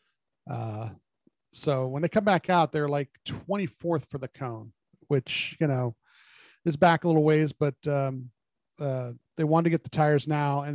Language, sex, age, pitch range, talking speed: English, male, 40-59, 130-155 Hz, 180 wpm